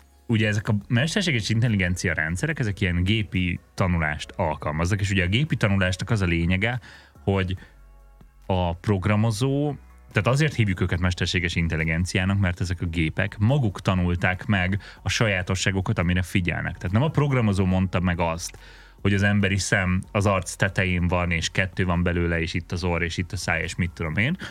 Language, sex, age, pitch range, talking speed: Hungarian, male, 30-49, 90-115 Hz, 170 wpm